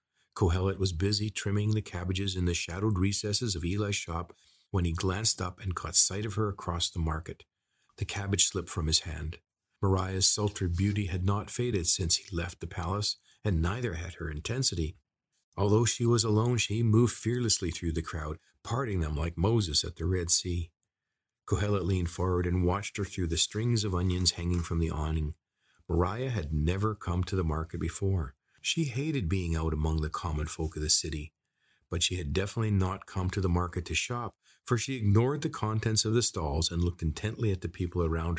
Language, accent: English, American